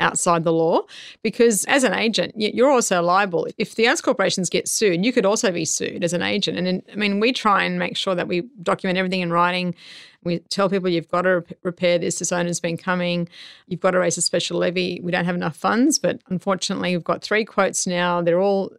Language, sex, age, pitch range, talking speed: English, female, 30-49, 175-195 Hz, 230 wpm